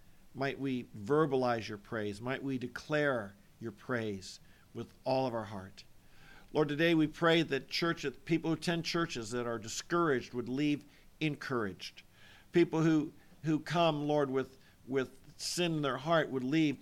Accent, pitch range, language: American, 120-155 Hz, English